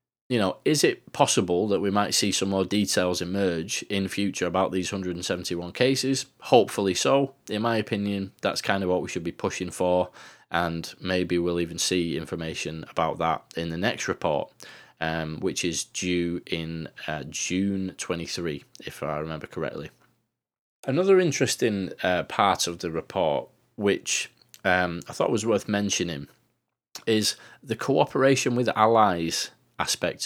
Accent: British